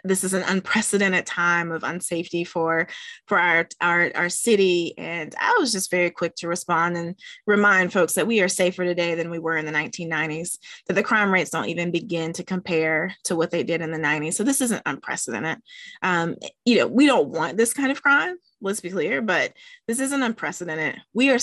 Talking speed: 205 wpm